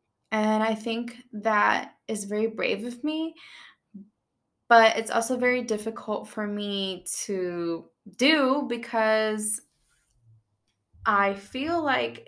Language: English